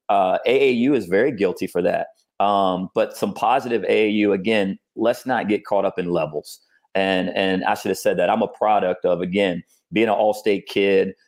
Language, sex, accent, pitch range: English, male, American, 95-105 Hz